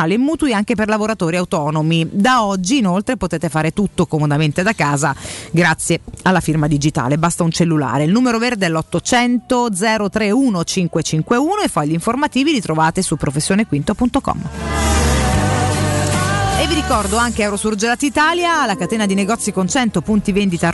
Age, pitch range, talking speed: 30-49, 170-245 Hz, 140 wpm